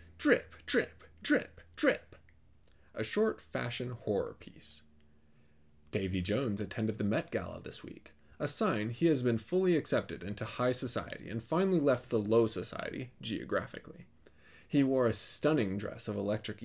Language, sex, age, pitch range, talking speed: English, male, 20-39, 100-140 Hz, 150 wpm